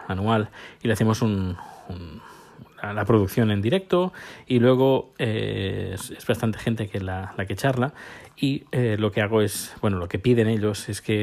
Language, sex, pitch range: Spanish, male, 110-140 Hz